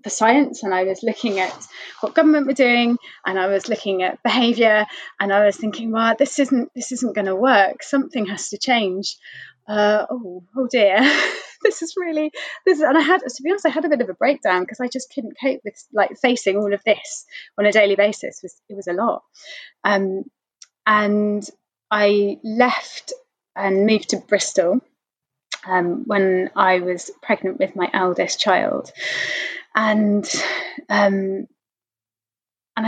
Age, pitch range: 20-39, 195-275 Hz